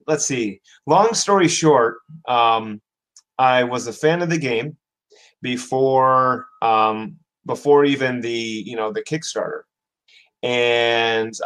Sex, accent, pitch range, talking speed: male, American, 120-155 Hz, 120 wpm